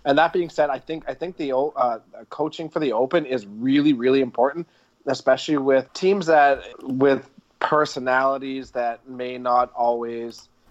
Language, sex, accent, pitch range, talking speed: English, male, American, 115-140 Hz, 155 wpm